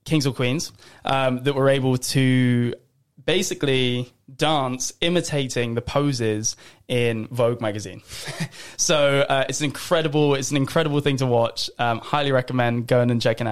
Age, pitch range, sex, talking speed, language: 20-39, 115-140 Hz, male, 140 wpm, English